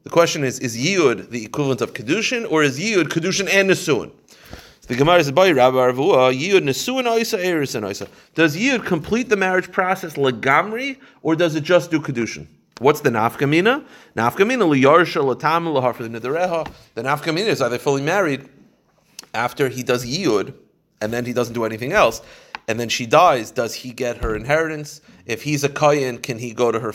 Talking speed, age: 160 wpm, 30-49